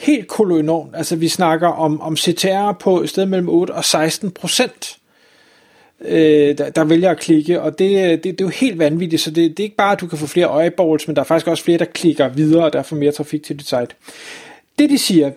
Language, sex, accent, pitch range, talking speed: Danish, male, native, 155-195 Hz, 240 wpm